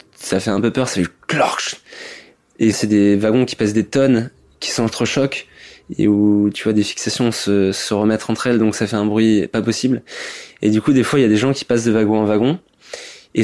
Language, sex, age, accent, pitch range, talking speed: French, male, 20-39, French, 105-120 Hz, 230 wpm